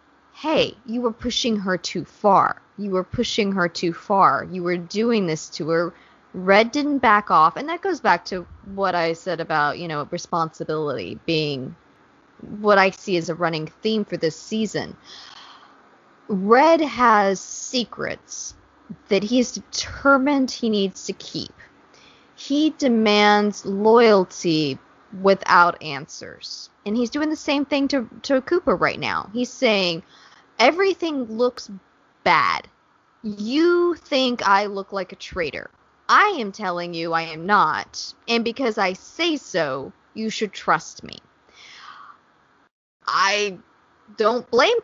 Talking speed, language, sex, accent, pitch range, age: 140 wpm, English, female, American, 185-245 Hz, 20-39